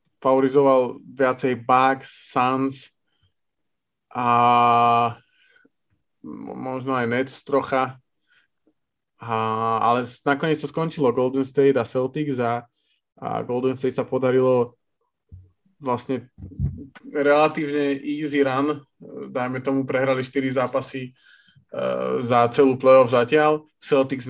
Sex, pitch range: male, 125-140 Hz